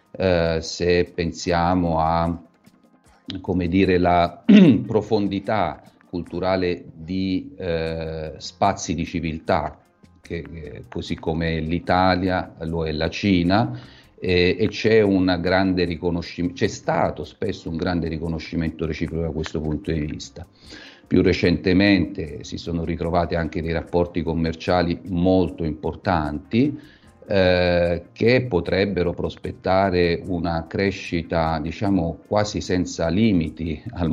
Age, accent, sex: 40-59, native, male